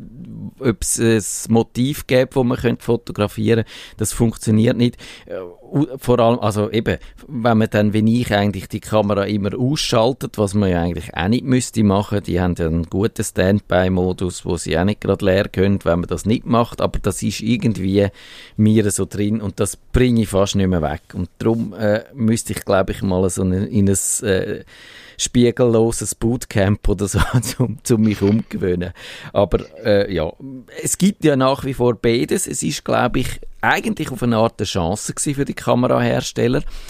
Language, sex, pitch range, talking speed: German, male, 100-120 Hz, 180 wpm